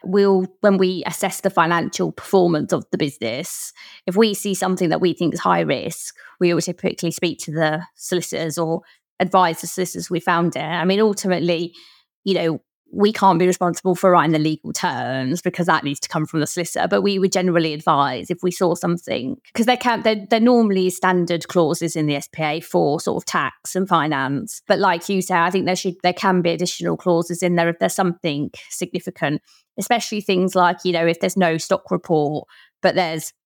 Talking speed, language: 205 wpm, English